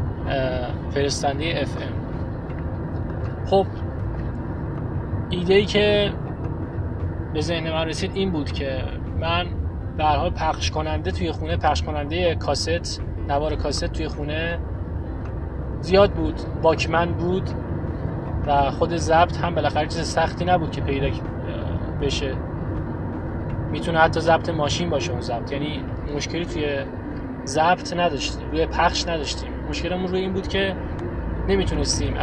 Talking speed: 120 wpm